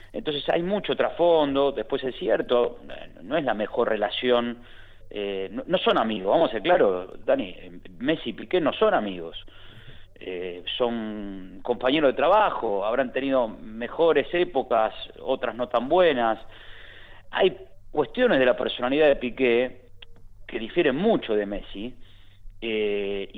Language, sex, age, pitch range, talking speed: Spanish, male, 40-59, 100-135 Hz, 135 wpm